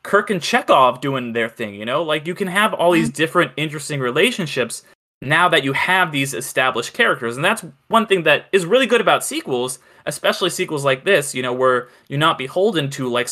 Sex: male